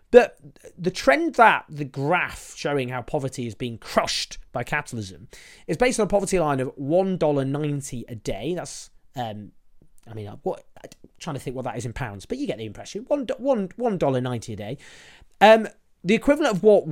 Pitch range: 120-165 Hz